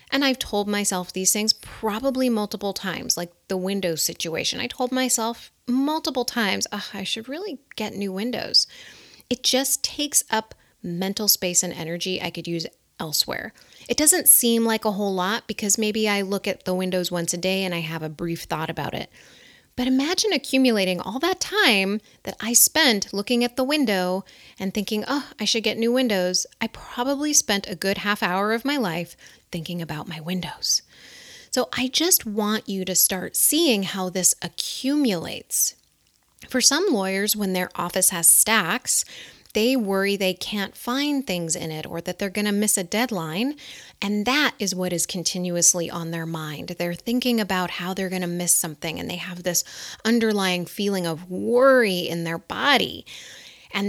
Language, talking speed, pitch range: English, 175 wpm, 180-235 Hz